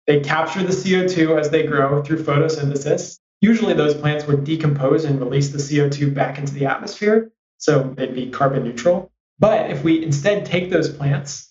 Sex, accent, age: male, American, 20-39